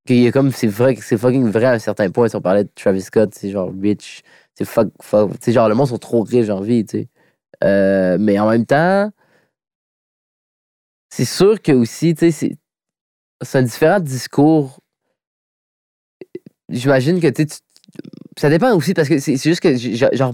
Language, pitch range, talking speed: French, 110-150 Hz, 185 wpm